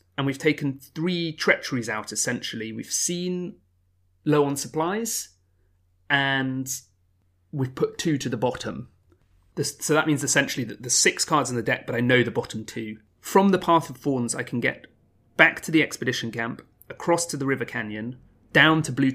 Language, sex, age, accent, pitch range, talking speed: English, male, 30-49, British, 100-140 Hz, 180 wpm